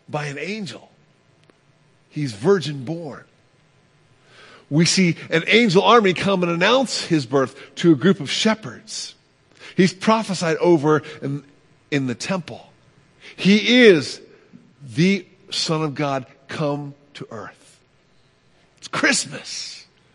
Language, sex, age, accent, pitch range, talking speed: English, male, 50-69, American, 135-195 Hz, 115 wpm